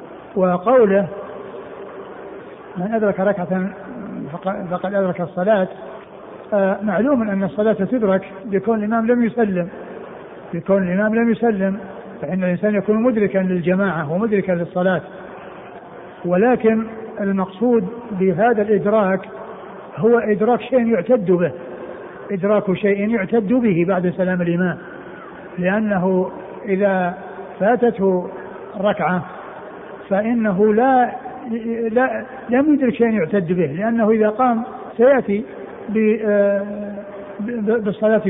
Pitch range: 195-235 Hz